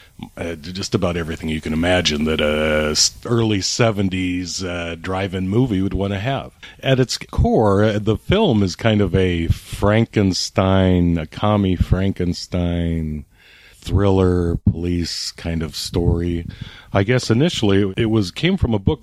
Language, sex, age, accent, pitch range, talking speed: English, male, 40-59, American, 90-120 Hz, 145 wpm